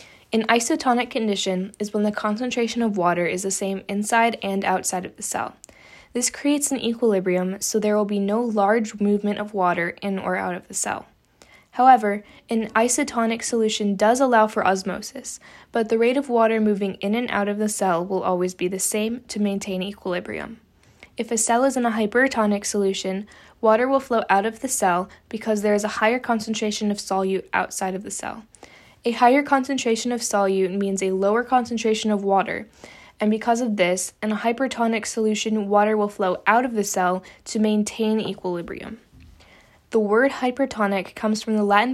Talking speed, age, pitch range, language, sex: 185 wpm, 10-29, 200-235 Hz, English, female